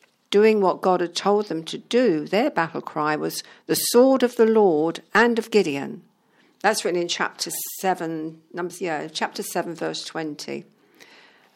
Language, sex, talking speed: English, female, 150 wpm